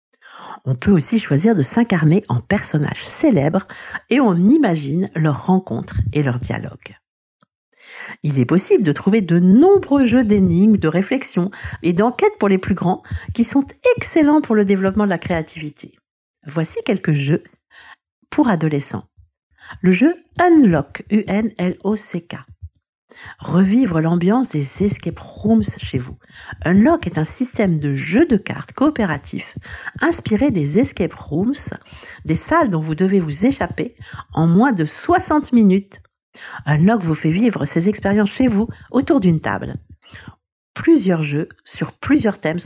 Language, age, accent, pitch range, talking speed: French, 60-79, French, 150-235 Hz, 145 wpm